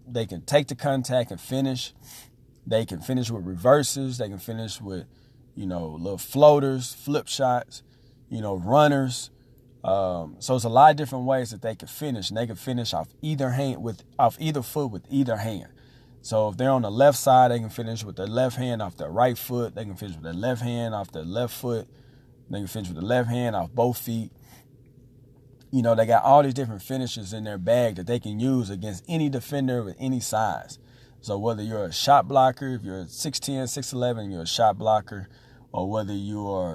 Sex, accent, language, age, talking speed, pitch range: male, American, English, 40-59, 210 wpm, 105-130 Hz